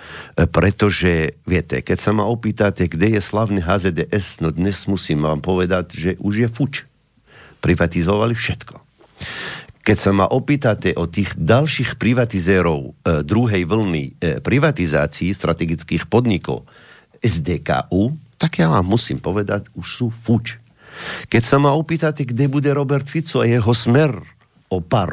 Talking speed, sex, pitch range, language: 135 wpm, male, 85-125 Hz, Slovak